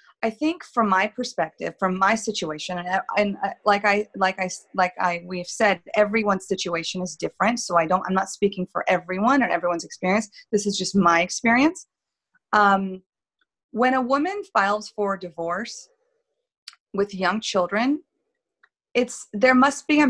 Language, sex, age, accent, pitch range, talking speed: English, female, 30-49, American, 185-240 Hz, 165 wpm